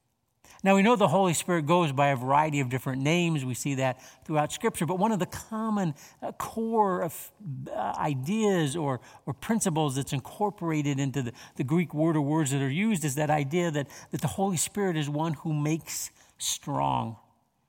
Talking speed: 185 wpm